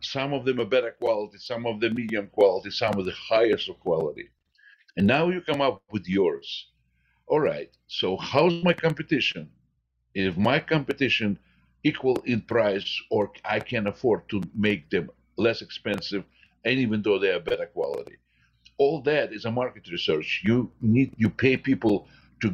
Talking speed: 170 wpm